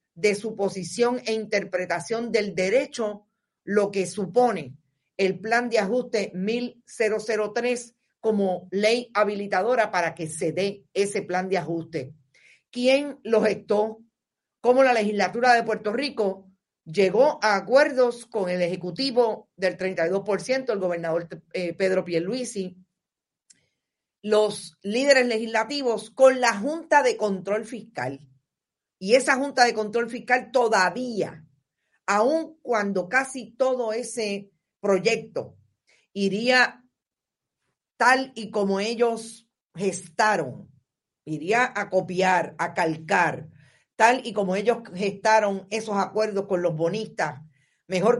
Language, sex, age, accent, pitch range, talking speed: Spanish, female, 50-69, American, 180-235 Hz, 115 wpm